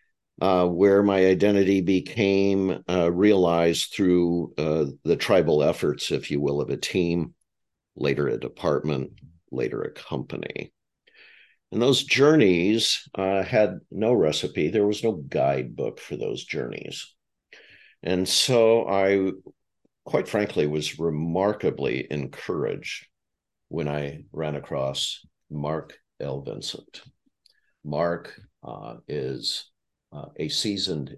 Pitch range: 75-100 Hz